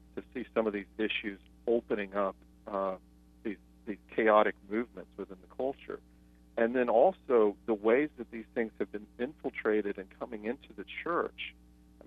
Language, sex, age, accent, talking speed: English, male, 40-59, American, 165 wpm